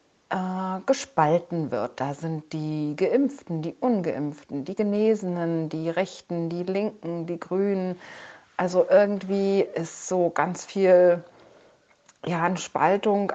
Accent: German